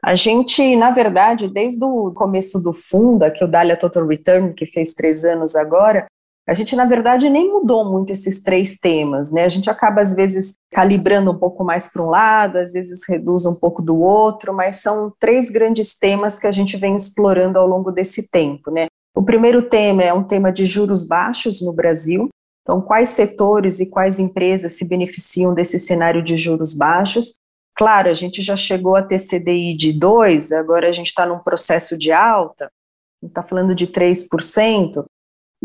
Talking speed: 190 wpm